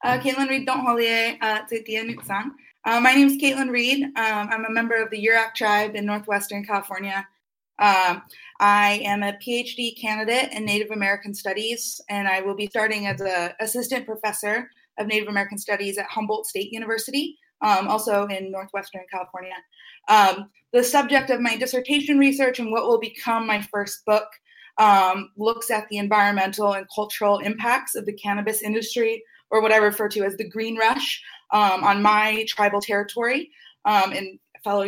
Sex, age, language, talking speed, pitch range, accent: female, 20-39, English, 165 wpm, 200-230 Hz, American